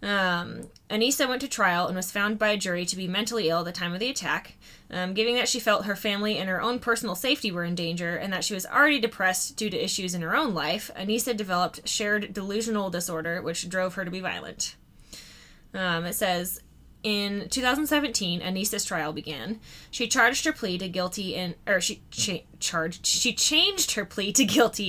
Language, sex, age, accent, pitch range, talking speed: English, female, 20-39, American, 180-225 Hz, 205 wpm